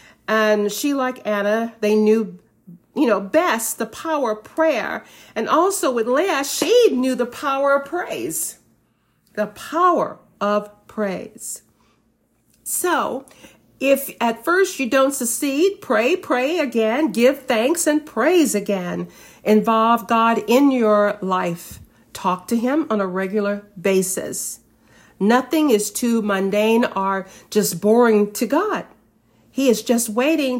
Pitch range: 200-290 Hz